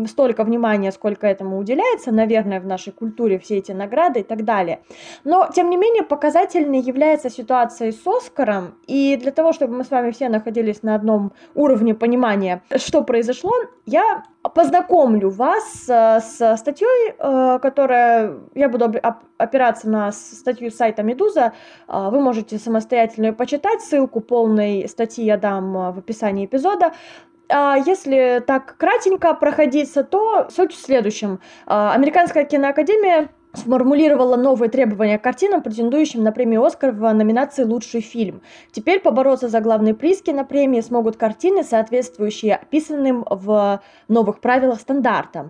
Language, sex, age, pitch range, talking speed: Russian, female, 20-39, 225-310 Hz, 135 wpm